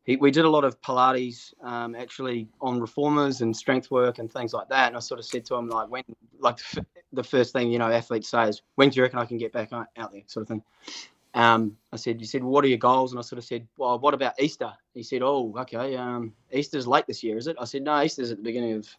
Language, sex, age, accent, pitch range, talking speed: English, male, 20-39, Australian, 115-135 Hz, 270 wpm